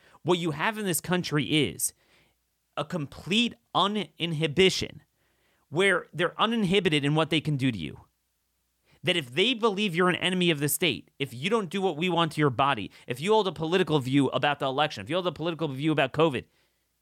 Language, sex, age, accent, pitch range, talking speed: English, male, 30-49, American, 120-175 Hz, 200 wpm